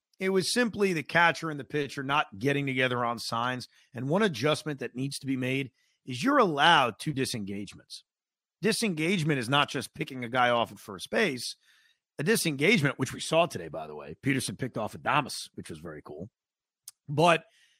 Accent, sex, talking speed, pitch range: American, male, 185 wpm, 130-180 Hz